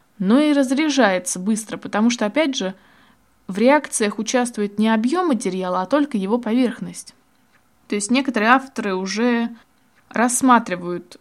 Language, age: Russian, 20-39